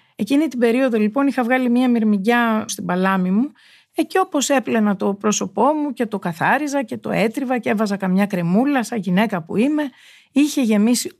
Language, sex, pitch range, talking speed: Greek, female, 205-265 Hz, 175 wpm